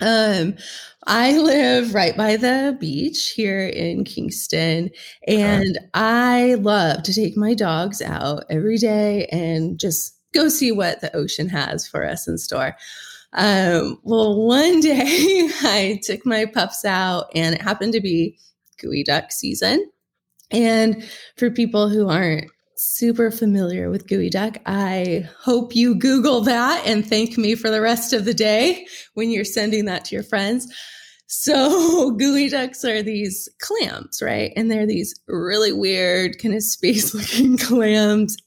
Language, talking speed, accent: English, 150 wpm, American